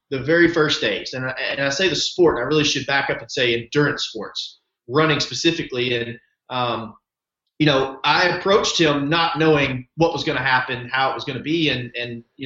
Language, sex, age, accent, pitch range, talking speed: English, male, 30-49, American, 140-185 Hz, 210 wpm